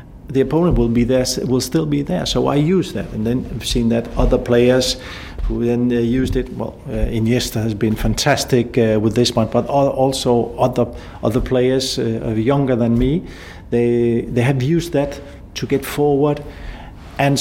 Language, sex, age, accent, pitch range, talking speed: English, male, 50-69, Danish, 115-130 Hz, 180 wpm